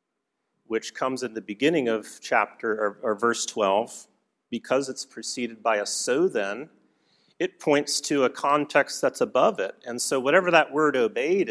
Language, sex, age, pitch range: English, male, 40-59, 115-140 Hz